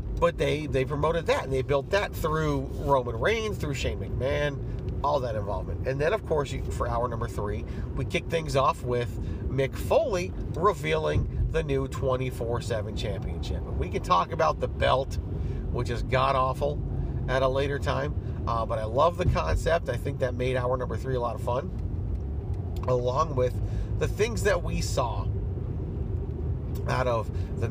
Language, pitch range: English, 100-130 Hz